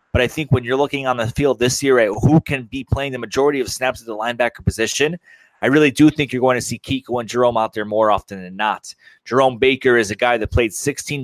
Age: 30-49